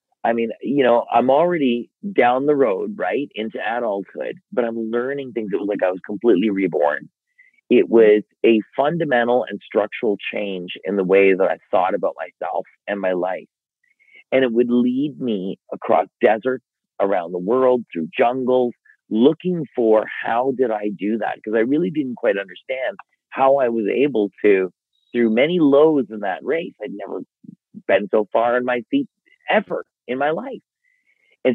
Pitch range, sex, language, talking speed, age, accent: 110-145 Hz, male, English, 170 wpm, 40-59, American